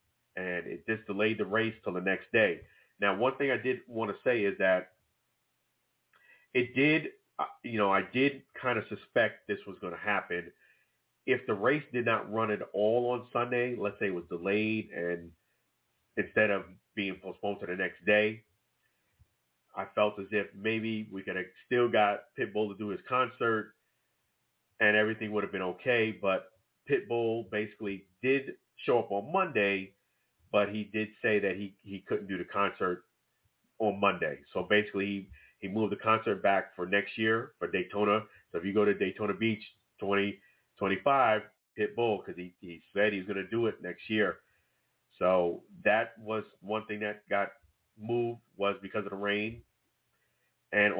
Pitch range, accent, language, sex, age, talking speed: 100-115 Hz, American, English, male, 40-59, 175 wpm